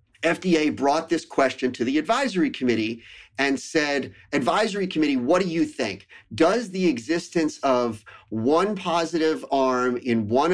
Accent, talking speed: American, 140 wpm